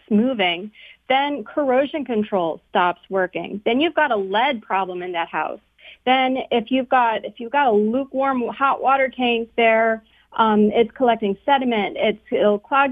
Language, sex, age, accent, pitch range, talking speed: English, female, 30-49, American, 205-245 Hz, 165 wpm